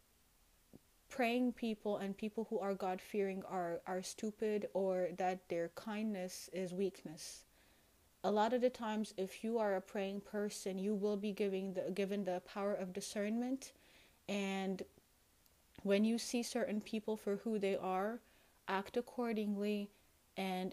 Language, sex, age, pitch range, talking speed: English, female, 30-49, 185-205 Hz, 145 wpm